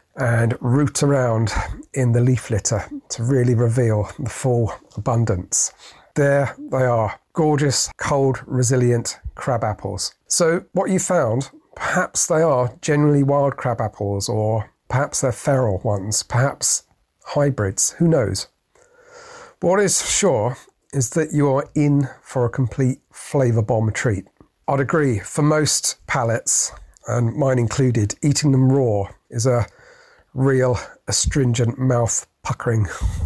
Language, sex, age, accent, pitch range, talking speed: English, male, 40-59, British, 115-145 Hz, 130 wpm